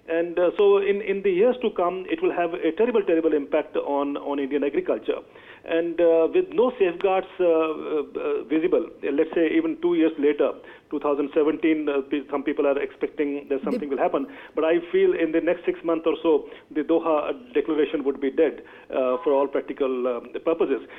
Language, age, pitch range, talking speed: English, 40-59, 145-190 Hz, 195 wpm